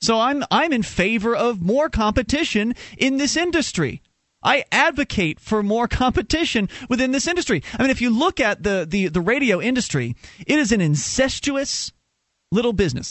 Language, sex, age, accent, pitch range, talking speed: English, male, 30-49, American, 175-235 Hz, 165 wpm